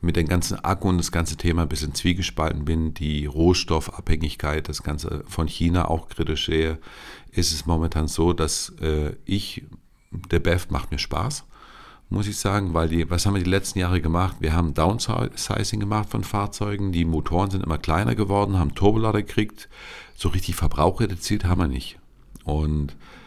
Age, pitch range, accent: 50-69, 80-100 Hz, German